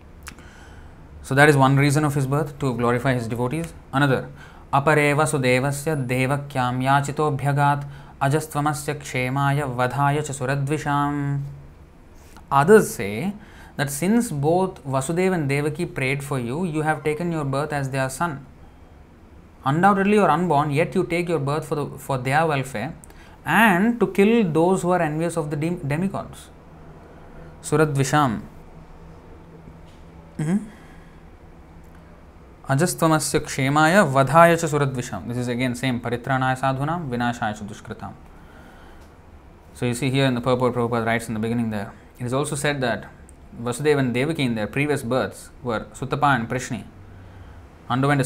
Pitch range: 95-150 Hz